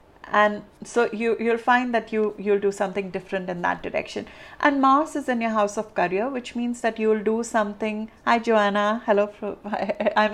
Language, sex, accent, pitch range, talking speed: English, female, Indian, 200-230 Hz, 180 wpm